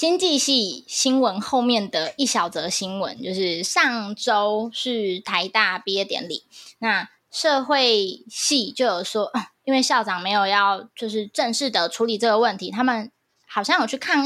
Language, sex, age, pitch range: Chinese, female, 20-39, 215-285 Hz